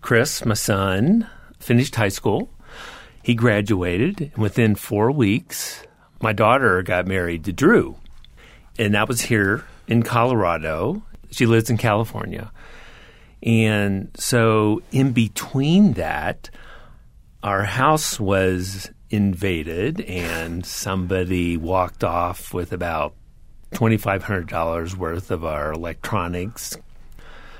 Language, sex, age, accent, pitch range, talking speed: English, male, 50-69, American, 90-115 Hz, 115 wpm